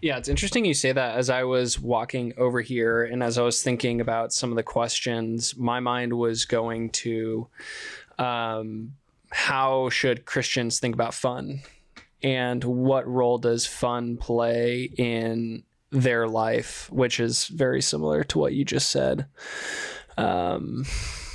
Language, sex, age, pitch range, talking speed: English, male, 20-39, 115-130 Hz, 150 wpm